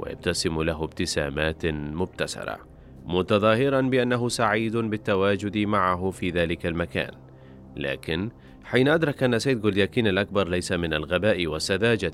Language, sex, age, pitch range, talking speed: Arabic, male, 30-49, 85-110 Hz, 115 wpm